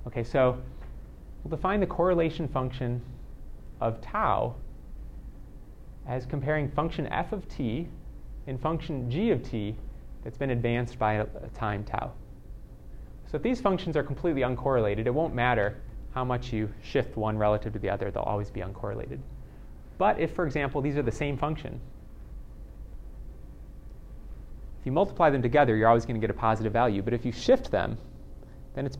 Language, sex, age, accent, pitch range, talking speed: English, male, 30-49, American, 105-140 Hz, 165 wpm